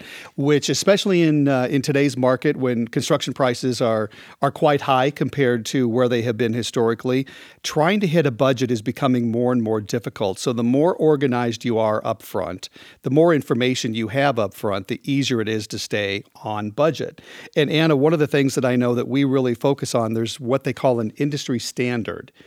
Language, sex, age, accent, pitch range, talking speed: English, male, 50-69, American, 115-140 Hz, 205 wpm